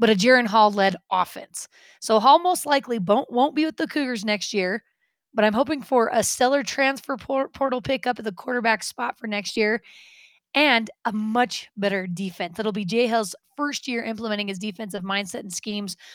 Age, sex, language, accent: 20-39, female, English, American